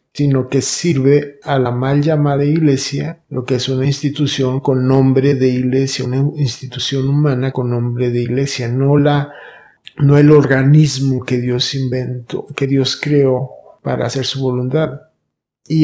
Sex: male